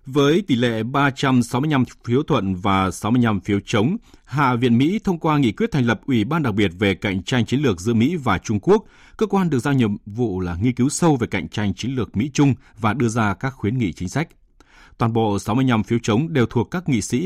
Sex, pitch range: male, 100-135 Hz